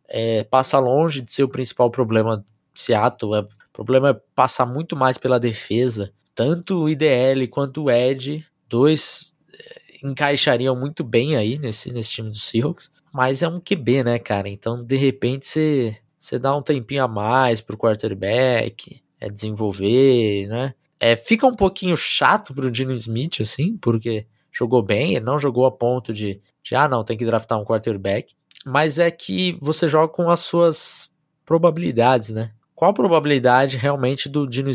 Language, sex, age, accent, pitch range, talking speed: Portuguese, male, 20-39, Brazilian, 120-155 Hz, 170 wpm